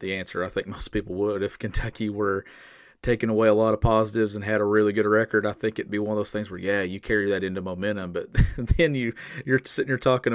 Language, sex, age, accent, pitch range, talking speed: English, male, 40-59, American, 100-120 Hz, 255 wpm